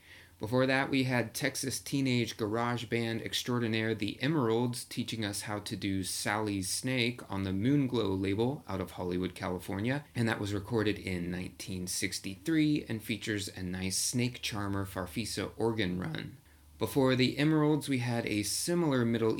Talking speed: 150 wpm